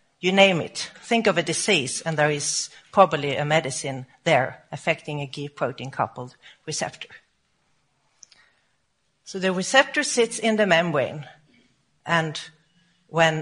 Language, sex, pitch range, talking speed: English, female, 160-215 Hz, 125 wpm